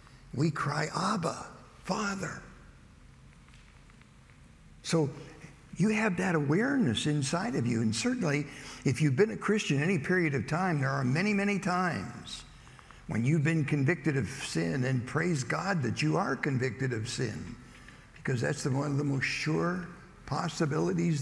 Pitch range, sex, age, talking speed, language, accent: 115-160 Hz, male, 60-79, 145 wpm, English, American